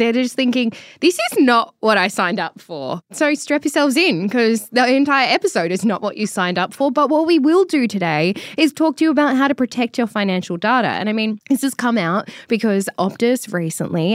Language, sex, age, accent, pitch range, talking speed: English, female, 10-29, Australian, 200-270 Hz, 225 wpm